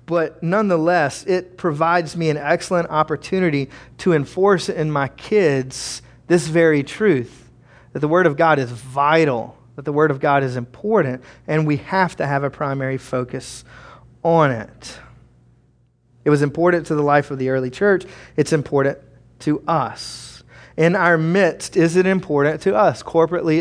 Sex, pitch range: male, 135-165 Hz